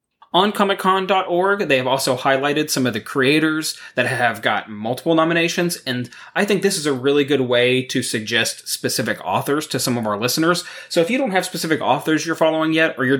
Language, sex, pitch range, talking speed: English, male, 120-155 Hz, 205 wpm